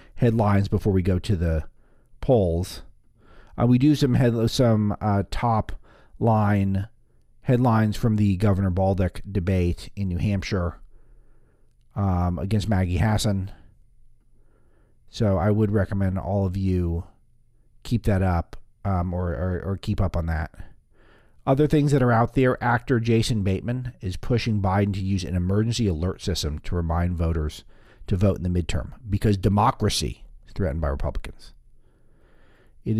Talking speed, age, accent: 145 wpm, 40-59, American